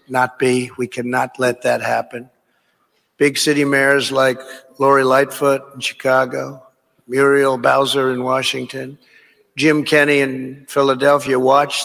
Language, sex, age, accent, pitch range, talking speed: English, male, 60-79, American, 130-150 Hz, 120 wpm